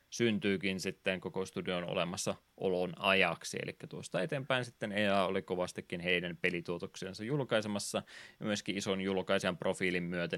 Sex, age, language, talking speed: male, 20-39, Finnish, 125 wpm